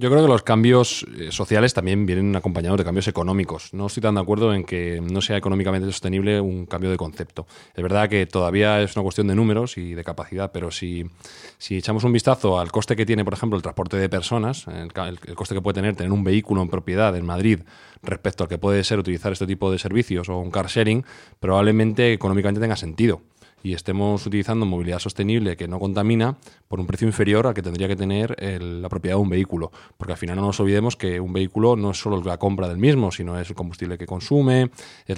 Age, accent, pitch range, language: 20-39, Spanish, 90-110 Hz, Spanish